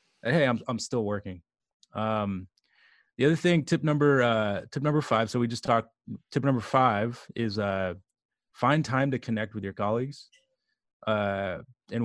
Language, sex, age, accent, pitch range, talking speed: English, male, 20-39, American, 110-130 Hz, 165 wpm